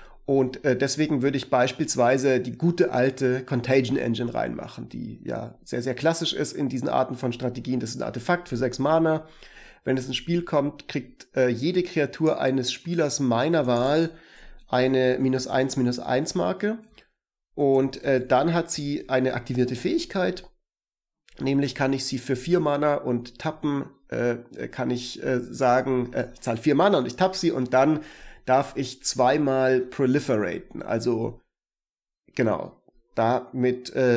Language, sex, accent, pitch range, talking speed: German, male, German, 125-145 Hz, 155 wpm